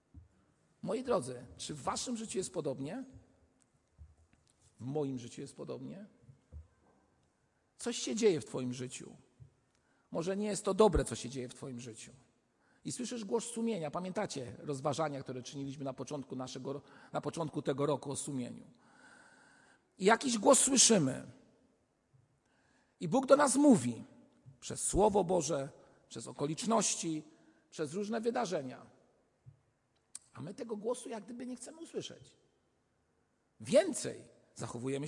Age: 50-69